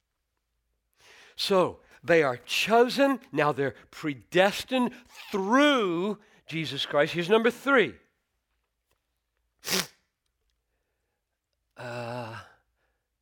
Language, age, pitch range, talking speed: English, 60-79, 115-175 Hz, 65 wpm